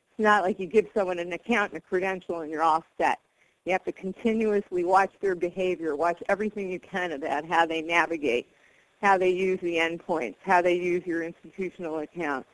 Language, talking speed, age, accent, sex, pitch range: English, 195 wpm, 40-59, American, female, 165-200 Hz